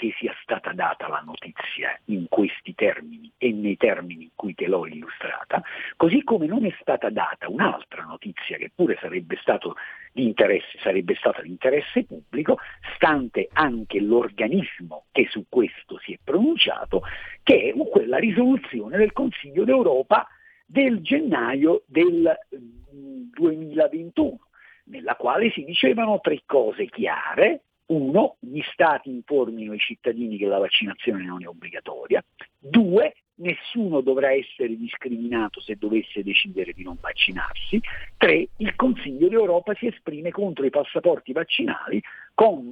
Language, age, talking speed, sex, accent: Italian, 50-69, 130 wpm, male, native